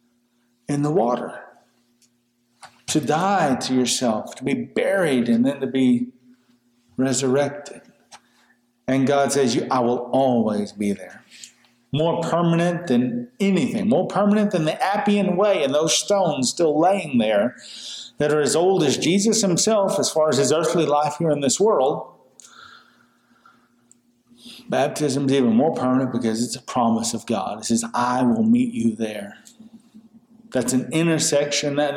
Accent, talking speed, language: American, 145 wpm, English